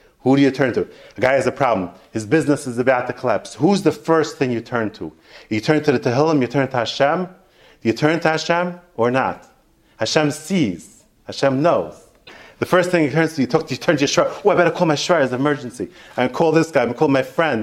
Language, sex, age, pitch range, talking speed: English, male, 30-49, 115-150 Hz, 260 wpm